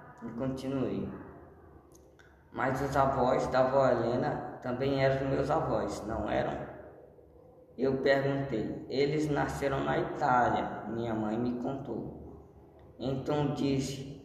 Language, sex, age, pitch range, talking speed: Portuguese, female, 10-29, 120-140 Hz, 115 wpm